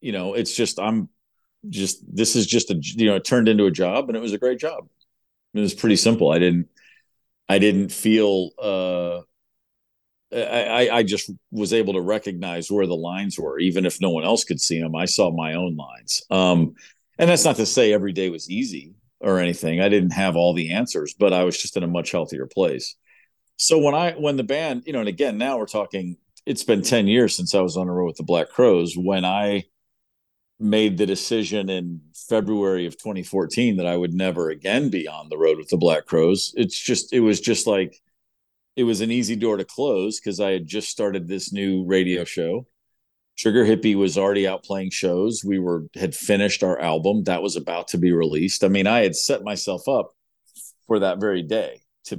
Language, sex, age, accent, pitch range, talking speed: English, male, 50-69, American, 90-105 Hz, 215 wpm